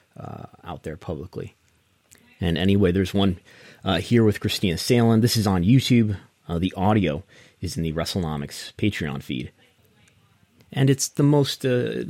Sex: male